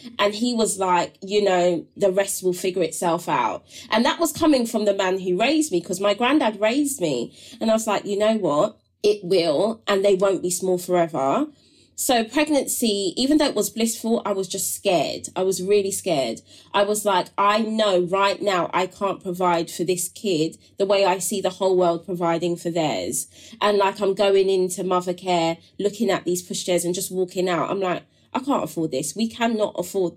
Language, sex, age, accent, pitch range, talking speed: English, female, 20-39, British, 175-210 Hz, 210 wpm